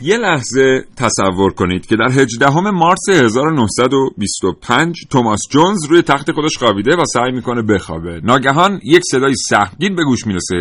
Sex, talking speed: male, 145 wpm